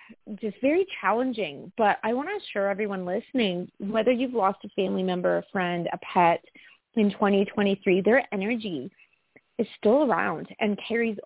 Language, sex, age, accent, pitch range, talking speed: English, female, 30-49, American, 175-230 Hz, 155 wpm